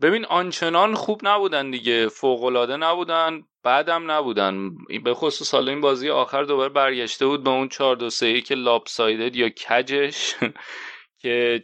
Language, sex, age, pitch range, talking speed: Persian, male, 30-49, 115-135 Hz, 135 wpm